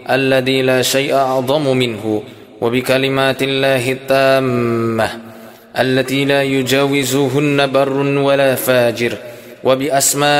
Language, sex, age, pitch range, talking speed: Indonesian, male, 20-39, 130-140 Hz, 85 wpm